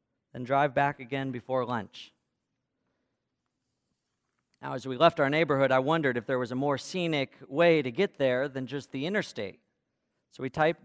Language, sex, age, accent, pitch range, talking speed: English, male, 40-59, American, 135-180 Hz, 170 wpm